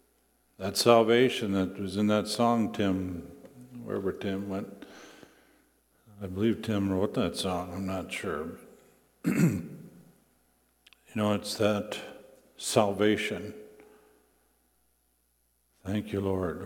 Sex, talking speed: male, 100 wpm